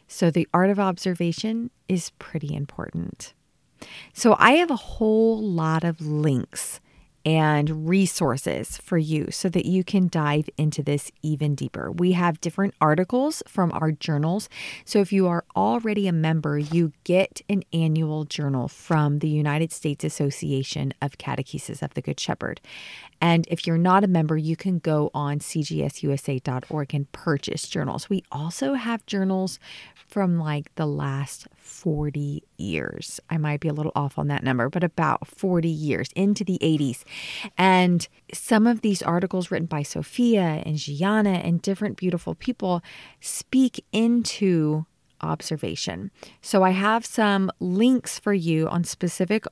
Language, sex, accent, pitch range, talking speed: English, female, American, 150-190 Hz, 150 wpm